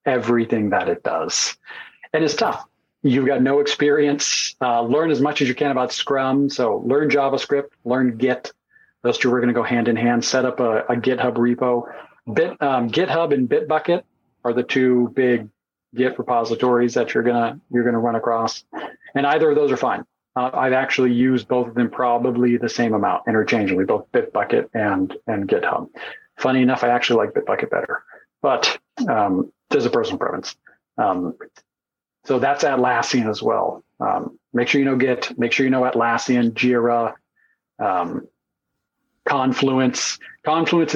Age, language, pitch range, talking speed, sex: 40-59, English, 120-135 Hz, 165 wpm, male